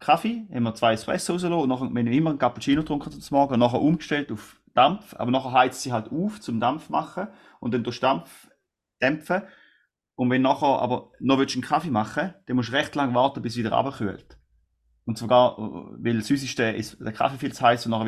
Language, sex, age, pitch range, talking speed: German, male, 30-49, 110-135 Hz, 220 wpm